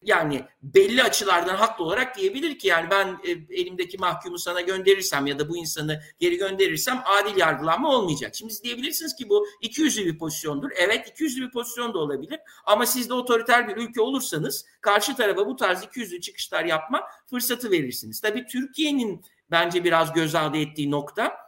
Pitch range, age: 170-250 Hz, 60-79